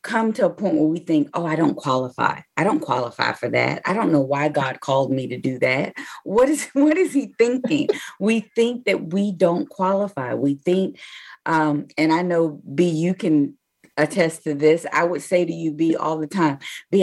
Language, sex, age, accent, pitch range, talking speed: English, female, 40-59, American, 155-190 Hz, 210 wpm